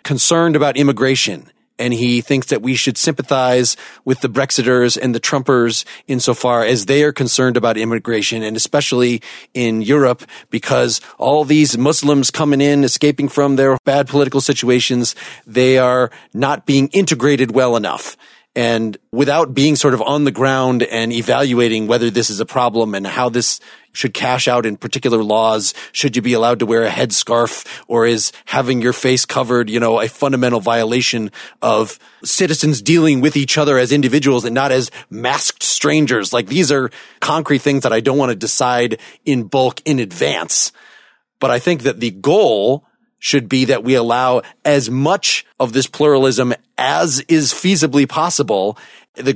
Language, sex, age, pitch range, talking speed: English, male, 30-49, 120-145 Hz, 170 wpm